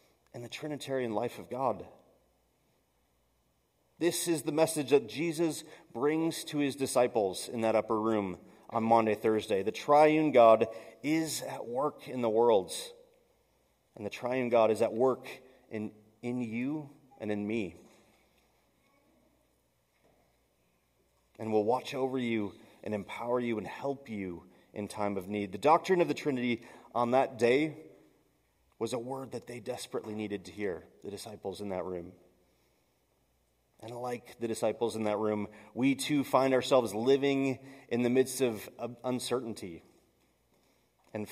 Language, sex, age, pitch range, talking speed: English, male, 30-49, 110-145 Hz, 145 wpm